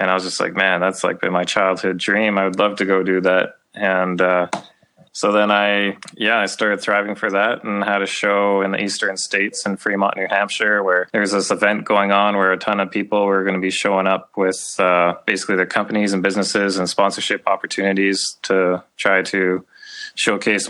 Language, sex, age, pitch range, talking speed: English, male, 20-39, 95-105 Hz, 210 wpm